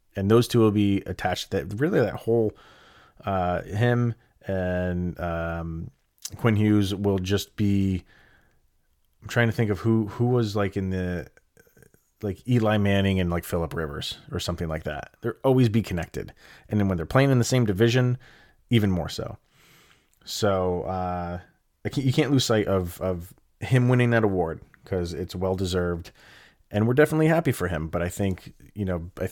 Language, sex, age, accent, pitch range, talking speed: English, male, 30-49, American, 90-110 Hz, 180 wpm